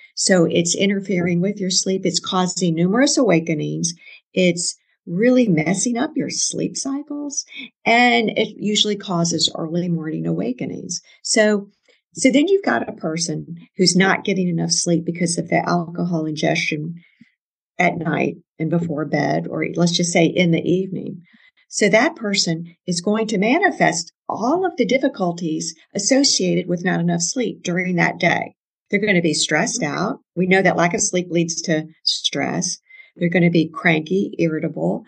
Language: English